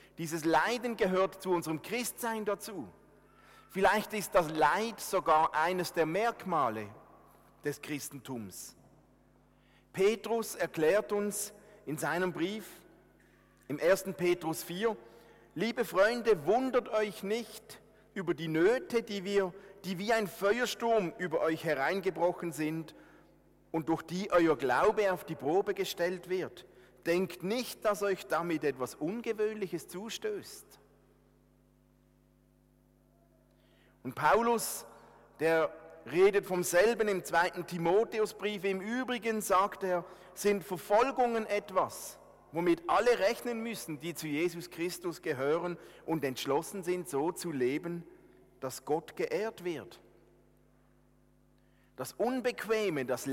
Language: German